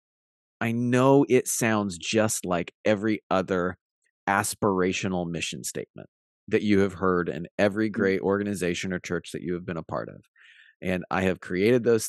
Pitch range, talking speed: 90-110 Hz, 165 wpm